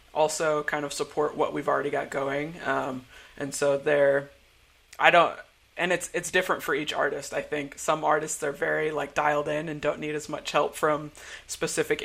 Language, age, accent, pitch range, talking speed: English, 30-49, American, 140-155 Hz, 195 wpm